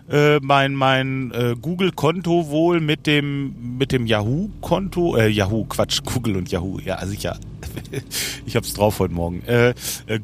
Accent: German